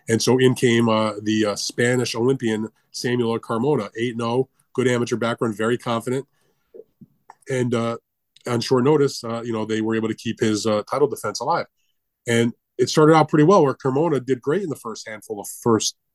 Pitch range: 110-130 Hz